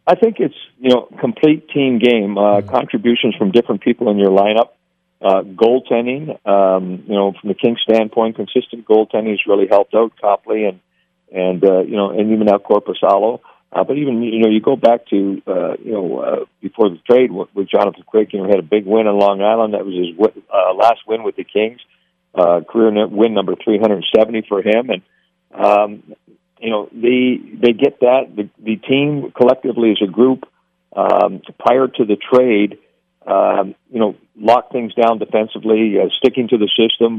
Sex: male